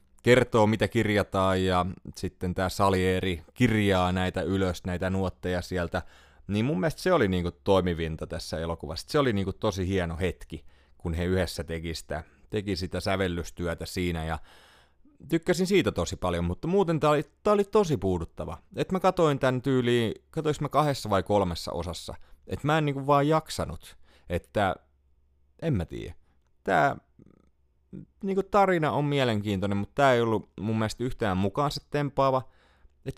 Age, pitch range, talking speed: 30-49, 85-140 Hz, 150 wpm